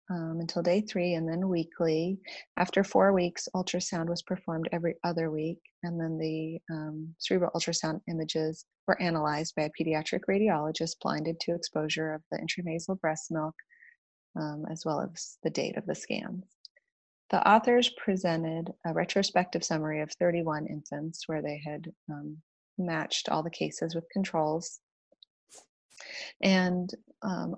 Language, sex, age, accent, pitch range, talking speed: English, female, 30-49, American, 160-185 Hz, 145 wpm